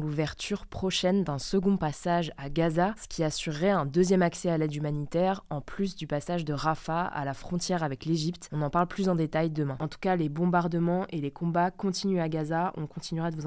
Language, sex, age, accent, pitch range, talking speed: French, female, 20-39, French, 160-190 Hz, 220 wpm